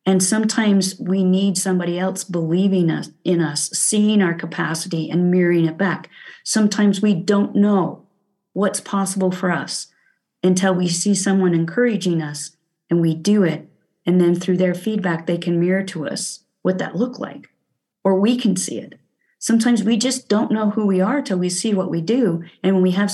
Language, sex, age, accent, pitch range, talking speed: English, female, 40-59, American, 180-210 Hz, 185 wpm